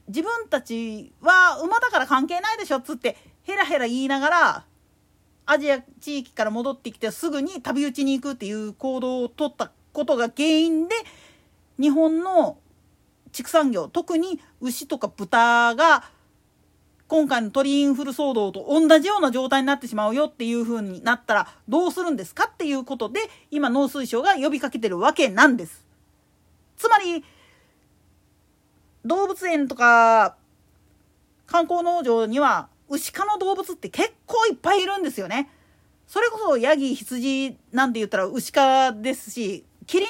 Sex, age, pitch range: female, 40-59, 235-325 Hz